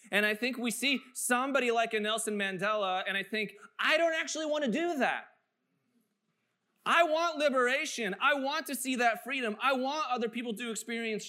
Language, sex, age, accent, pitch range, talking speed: English, male, 20-39, American, 205-250 Hz, 185 wpm